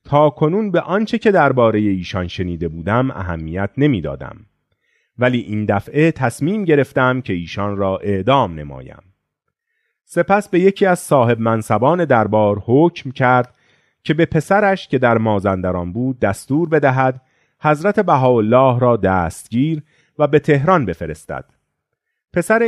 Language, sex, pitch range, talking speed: Persian, male, 105-155 Hz, 125 wpm